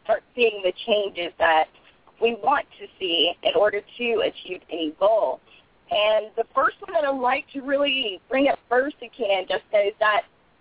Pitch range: 230-320 Hz